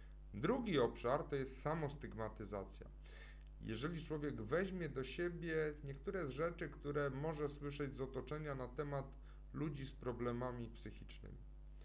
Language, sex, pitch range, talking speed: Polish, male, 115-150 Hz, 120 wpm